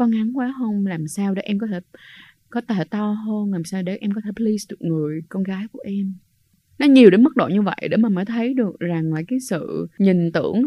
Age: 20-39